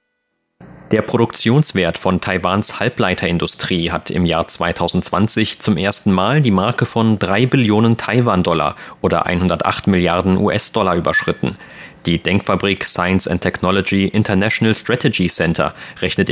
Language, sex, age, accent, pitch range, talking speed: German, male, 30-49, German, 90-110 Hz, 120 wpm